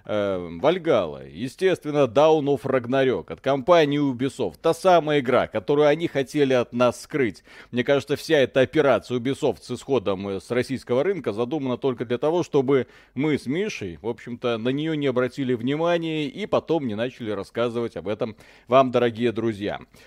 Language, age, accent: Russian, 30-49, native